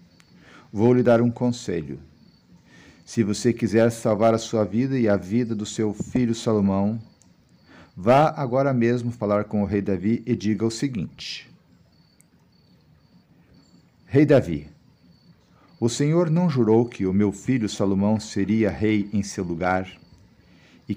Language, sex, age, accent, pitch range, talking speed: Portuguese, male, 50-69, Brazilian, 100-120 Hz, 135 wpm